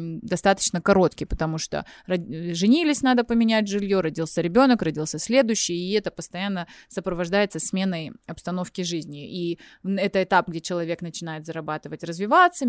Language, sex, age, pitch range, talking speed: Russian, female, 20-39, 170-220 Hz, 130 wpm